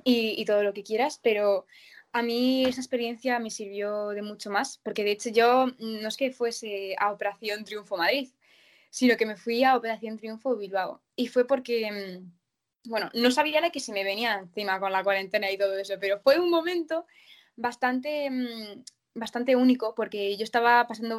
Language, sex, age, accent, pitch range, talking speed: Spanish, female, 20-39, Spanish, 205-240 Hz, 185 wpm